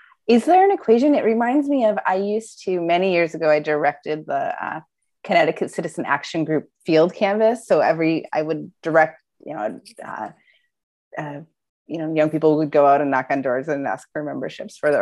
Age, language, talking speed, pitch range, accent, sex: 30-49, English, 200 wpm, 160-230 Hz, American, female